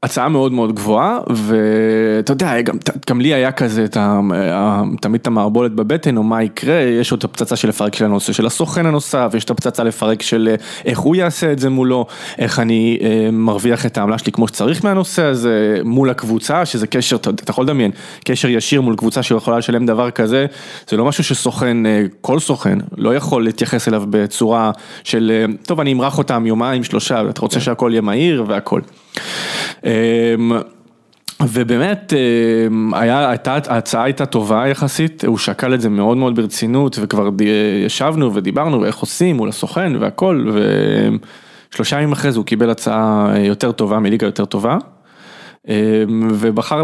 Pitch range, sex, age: 110-130 Hz, male, 20-39